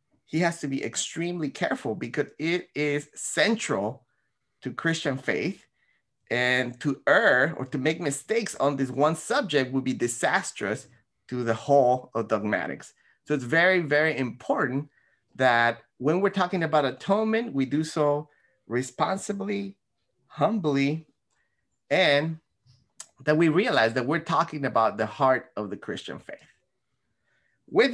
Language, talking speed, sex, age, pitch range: English, 135 wpm, male, 30-49, 125-165 Hz